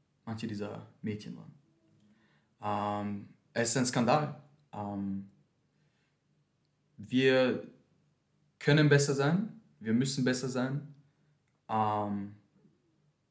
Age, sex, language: 20-39, male, German